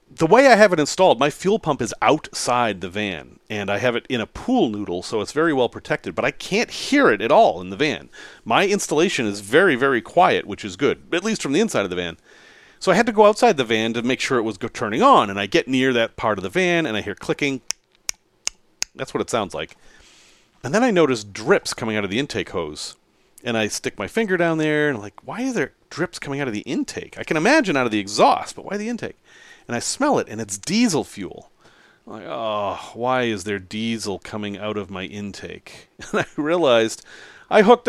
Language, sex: English, male